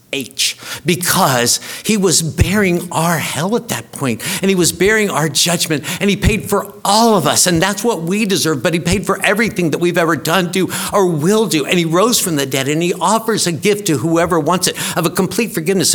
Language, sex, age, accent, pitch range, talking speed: English, male, 50-69, American, 170-215 Hz, 225 wpm